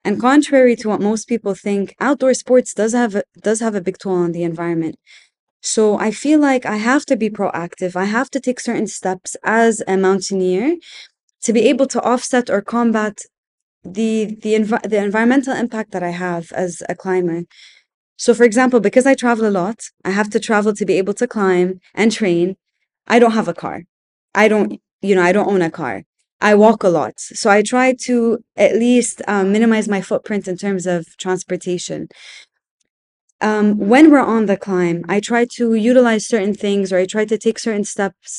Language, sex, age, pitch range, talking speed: English, female, 20-39, 185-230 Hz, 195 wpm